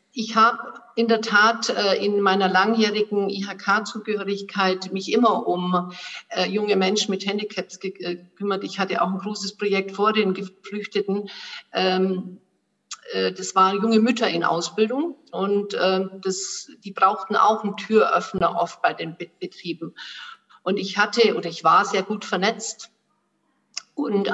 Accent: German